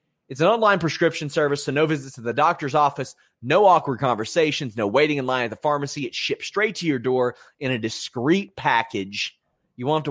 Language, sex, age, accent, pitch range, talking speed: English, male, 30-49, American, 120-170 Hz, 210 wpm